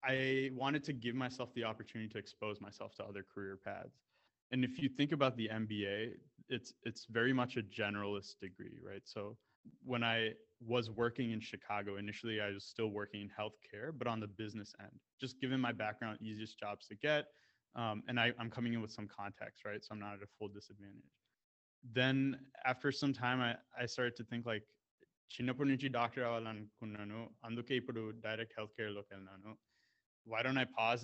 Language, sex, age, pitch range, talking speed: Telugu, male, 20-39, 105-125 Hz, 190 wpm